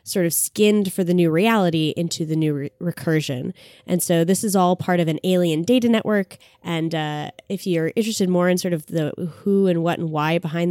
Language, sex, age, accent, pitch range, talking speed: English, female, 10-29, American, 155-190 Hz, 220 wpm